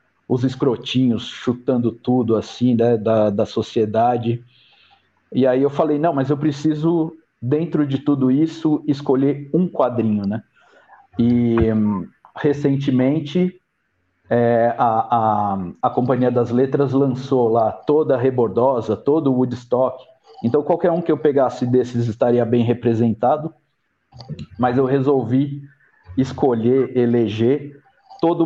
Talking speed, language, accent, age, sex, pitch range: 120 wpm, Portuguese, Brazilian, 50-69, male, 120-145 Hz